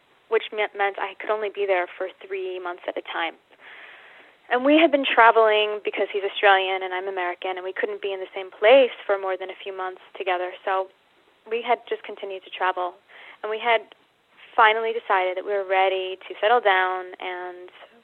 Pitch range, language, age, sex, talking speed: 185-225 Hz, English, 20-39, female, 195 wpm